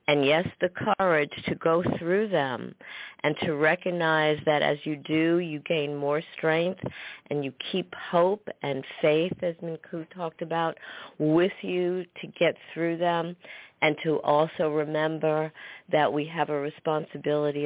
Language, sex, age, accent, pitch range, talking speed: English, female, 50-69, American, 145-175 Hz, 150 wpm